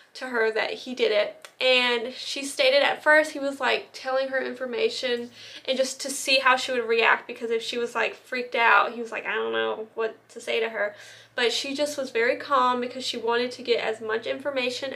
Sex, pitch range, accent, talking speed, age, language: female, 240-295 Hz, American, 230 wpm, 10-29, English